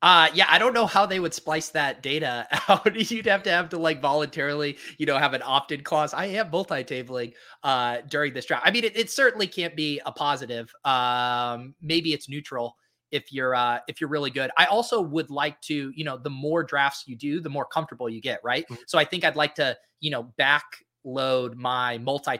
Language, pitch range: English, 130-160 Hz